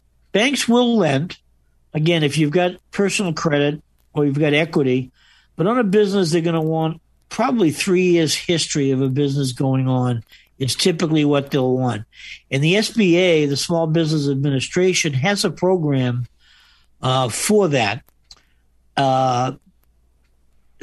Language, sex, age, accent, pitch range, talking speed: English, male, 50-69, American, 125-170 Hz, 140 wpm